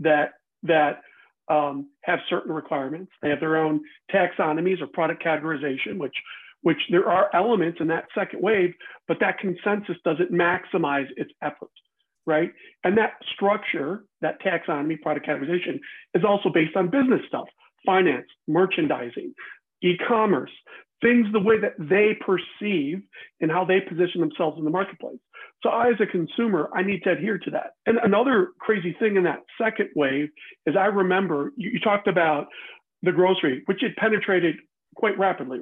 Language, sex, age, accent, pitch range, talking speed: English, male, 50-69, American, 165-210 Hz, 160 wpm